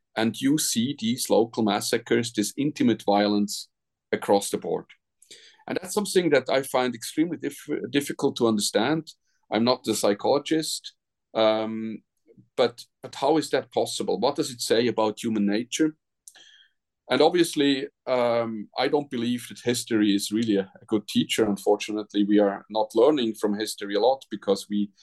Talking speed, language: 160 wpm, English